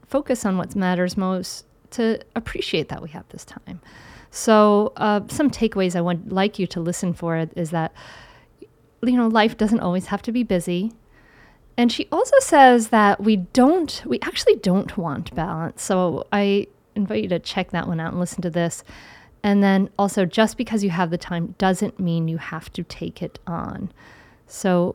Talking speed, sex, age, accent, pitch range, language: 185 wpm, female, 40-59, American, 175-215 Hz, English